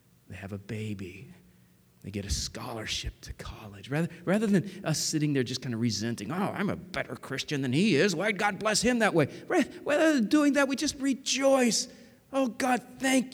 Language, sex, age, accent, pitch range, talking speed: English, male, 40-59, American, 130-200 Hz, 200 wpm